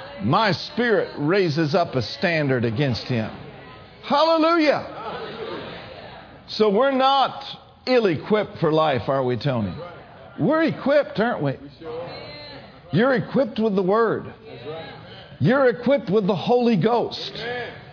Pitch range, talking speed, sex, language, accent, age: 145-235 Hz, 110 wpm, male, English, American, 50-69